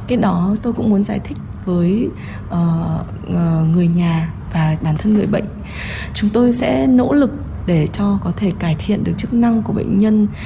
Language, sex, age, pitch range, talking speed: Vietnamese, female, 20-39, 160-210 Hz, 190 wpm